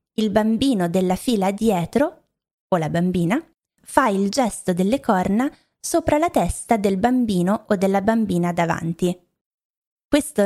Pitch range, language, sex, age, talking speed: 180-230 Hz, Italian, female, 20-39, 130 wpm